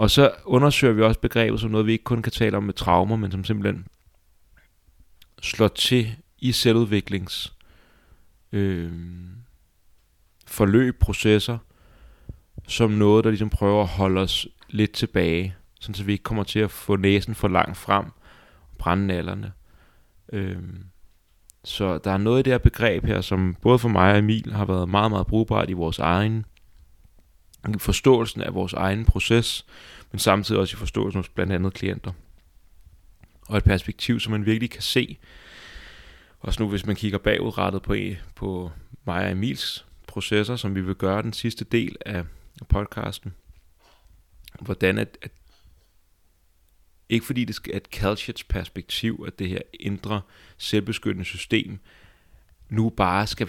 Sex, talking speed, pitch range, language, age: male, 150 wpm, 90-110 Hz, Danish, 30-49